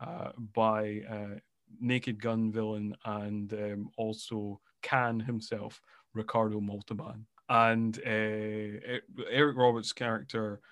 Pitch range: 110-125 Hz